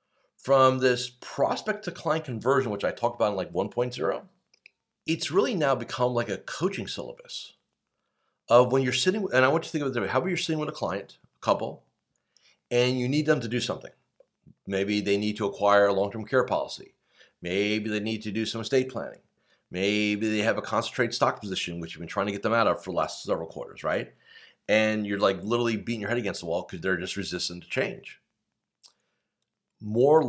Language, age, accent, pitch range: English, 40-59, American, 100-130 Hz